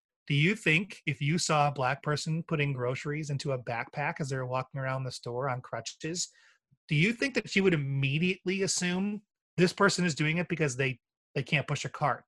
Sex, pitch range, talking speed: male, 135-175 Hz, 205 wpm